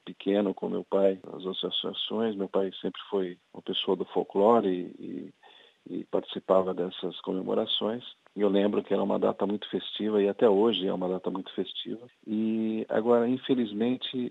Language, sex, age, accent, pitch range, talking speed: Portuguese, male, 50-69, Brazilian, 95-115 Hz, 170 wpm